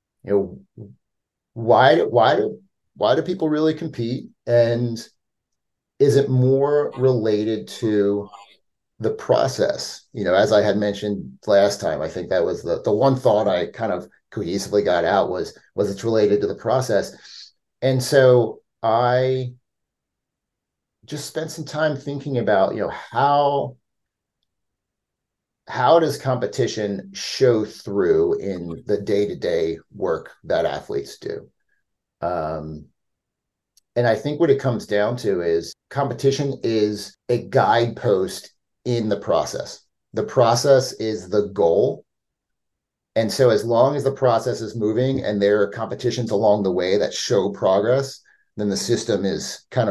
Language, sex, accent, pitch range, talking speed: English, male, American, 105-140 Hz, 140 wpm